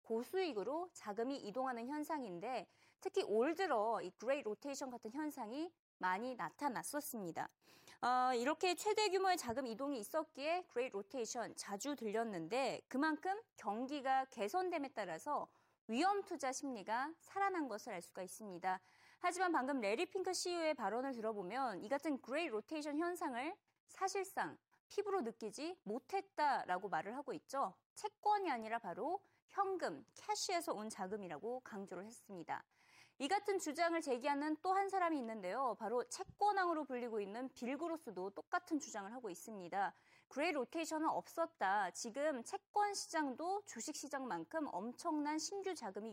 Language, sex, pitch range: Korean, female, 230-365 Hz